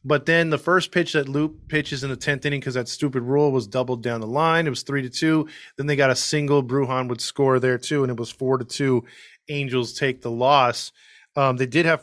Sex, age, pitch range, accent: male, 20-39, 130-160 Hz, American